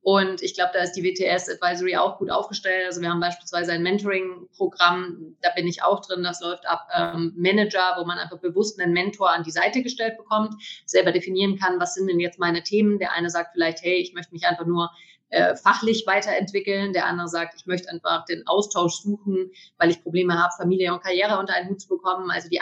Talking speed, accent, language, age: 220 wpm, German, German, 30-49